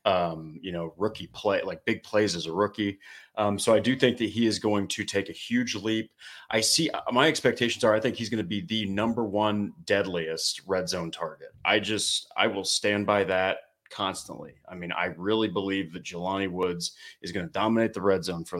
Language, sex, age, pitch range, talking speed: English, male, 30-49, 95-115 Hz, 210 wpm